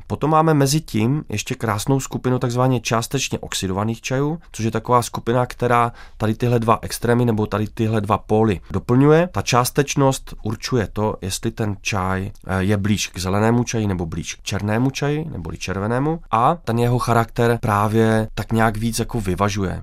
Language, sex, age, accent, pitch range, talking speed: Czech, male, 30-49, native, 95-115 Hz, 165 wpm